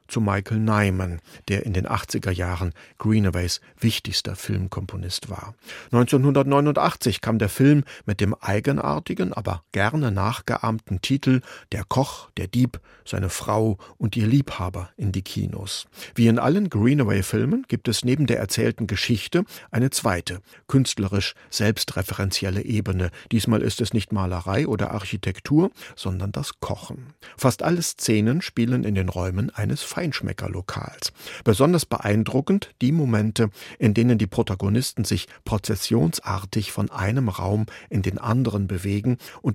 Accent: German